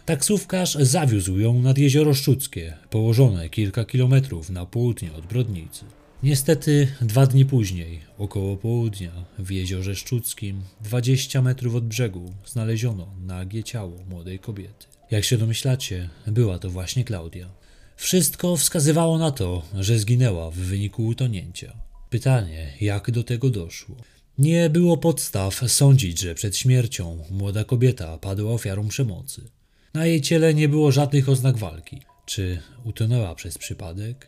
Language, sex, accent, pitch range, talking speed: Polish, male, native, 95-130 Hz, 135 wpm